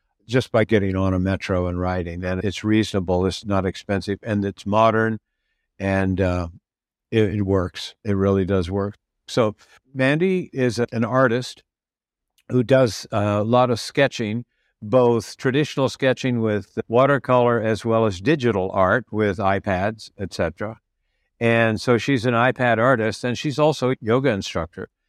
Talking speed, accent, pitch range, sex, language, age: 150 wpm, American, 100-125 Hz, male, English, 60-79